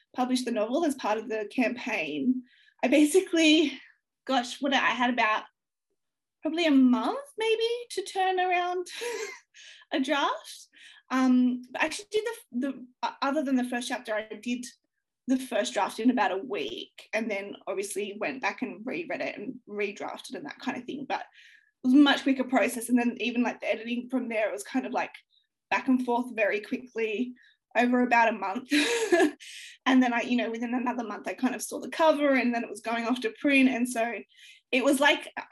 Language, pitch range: English, 235-290 Hz